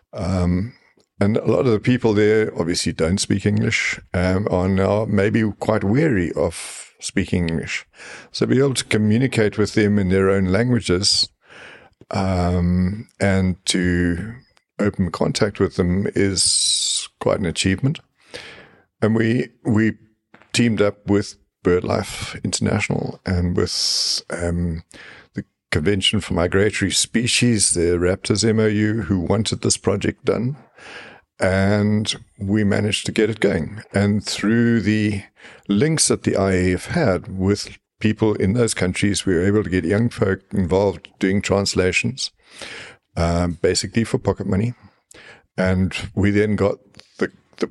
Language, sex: English, male